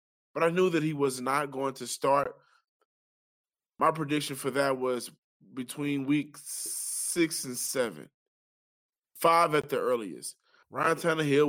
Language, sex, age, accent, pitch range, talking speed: English, male, 20-39, American, 130-165 Hz, 135 wpm